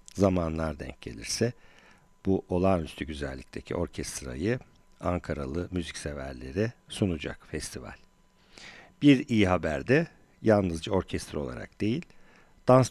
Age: 50-69